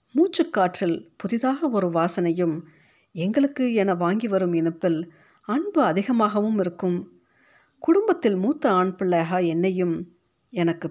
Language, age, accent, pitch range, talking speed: Tamil, 50-69, native, 170-225 Hz, 100 wpm